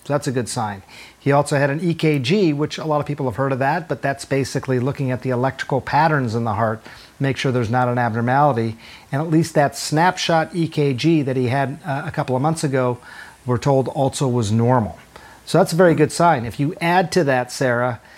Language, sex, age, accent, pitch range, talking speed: English, male, 40-59, American, 130-155 Hz, 220 wpm